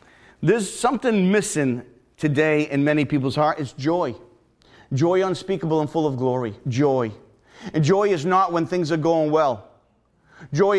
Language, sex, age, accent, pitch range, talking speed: English, male, 40-59, American, 155-200 Hz, 150 wpm